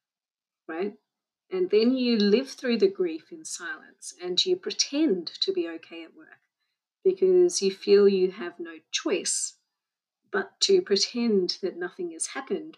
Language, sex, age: English, female, 30-49